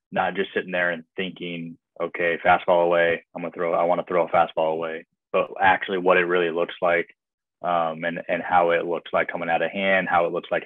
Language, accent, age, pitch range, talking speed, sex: English, American, 20-39, 85-95 Hz, 235 wpm, male